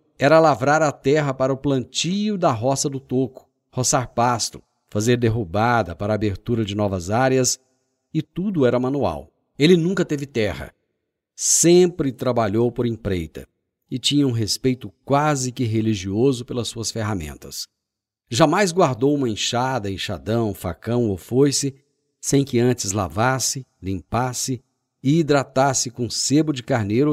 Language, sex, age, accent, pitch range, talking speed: Portuguese, male, 50-69, Brazilian, 110-140 Hz, 135 wpm